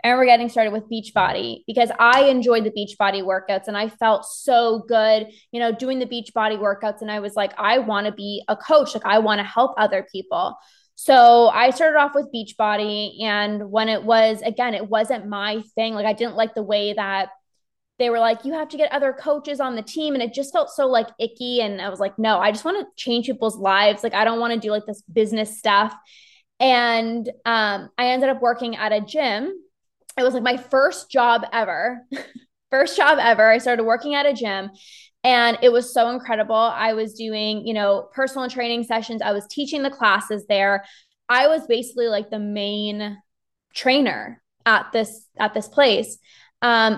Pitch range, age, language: 210-250 Hz, 20-39, English